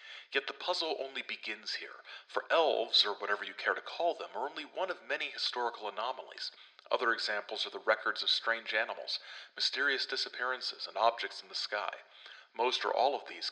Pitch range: 105-170 Hz